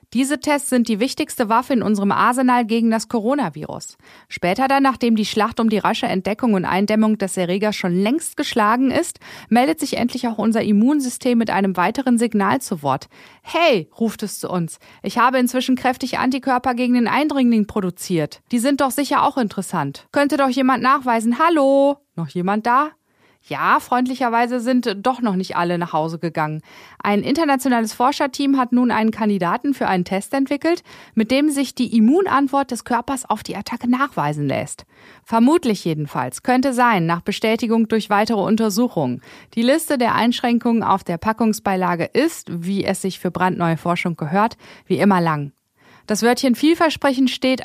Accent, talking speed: German, 165 wpm